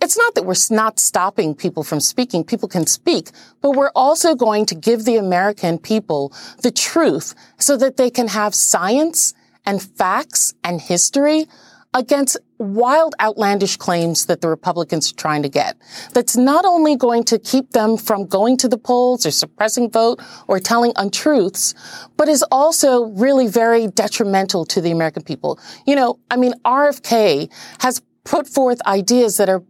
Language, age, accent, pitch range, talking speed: English, 40-59, American, 195-255 Hz, 170 wpm